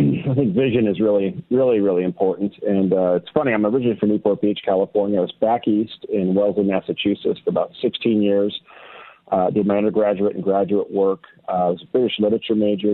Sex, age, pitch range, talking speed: male, 40-59, 100-120 Hz, 200 wpm